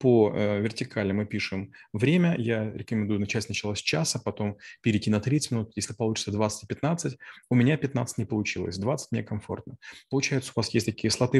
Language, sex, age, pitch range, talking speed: Russian, male, 30-49, 105-130 Hz, 175 wpm